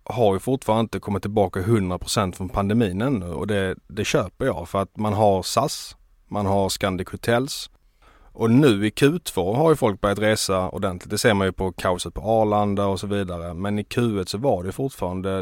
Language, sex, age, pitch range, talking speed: Swedish, male, 30-49, 95-110 Hz, 200 wpm